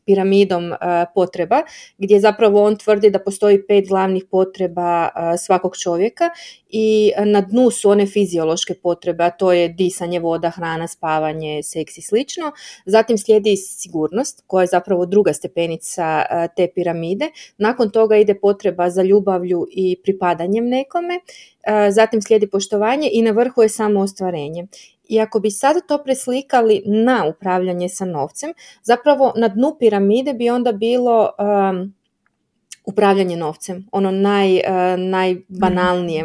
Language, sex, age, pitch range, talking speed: Croatian, female, 30-49, 180-220 Hz, 135 wpm